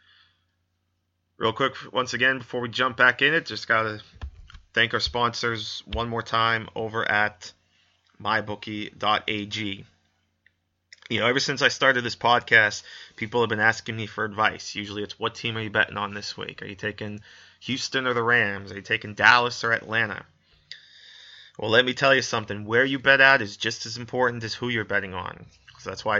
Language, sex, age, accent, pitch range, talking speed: English, male, 30-49, American, 100-115 Hz, 185 wpm